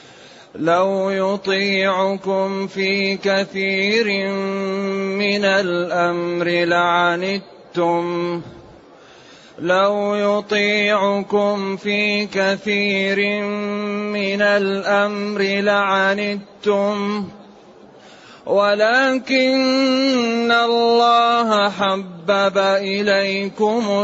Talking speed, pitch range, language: 45 wpm, 195-205 Hz, Arabic